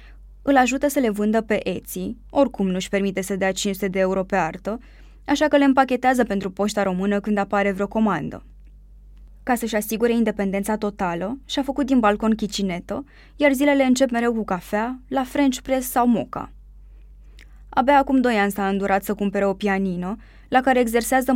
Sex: female